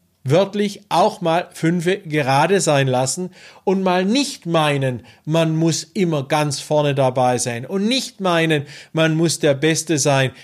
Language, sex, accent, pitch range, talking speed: German, male, German, 140-180 Hz, 150 wpm